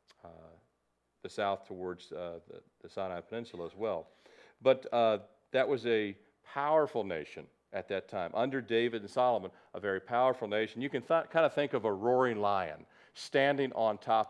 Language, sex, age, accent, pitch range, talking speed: English, male, 40-59, American, 95-115 Hz, 175 wpm